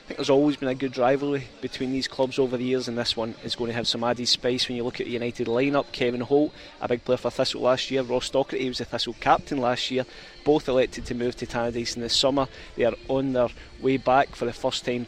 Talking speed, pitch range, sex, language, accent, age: 265 wpm, 120-135 Hz, male, English, British, 20-39